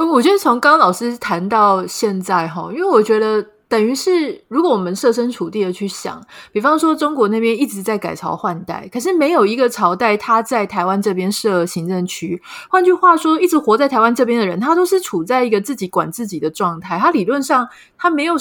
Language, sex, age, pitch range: Chinese, female, 20-39, 180-260 Hz